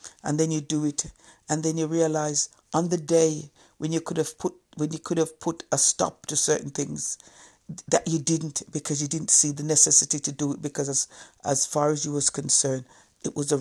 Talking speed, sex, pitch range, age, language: 220 wpm, female, 140-155 Hz, 60-79, English